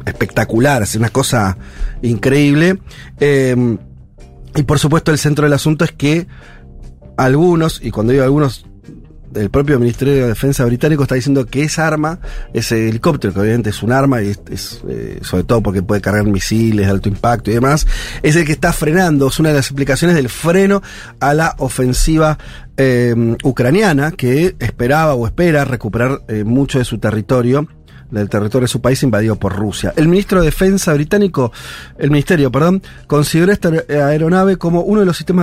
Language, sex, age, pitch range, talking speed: Spanish, male, 40-59, 115-160 Hz, 175 wpm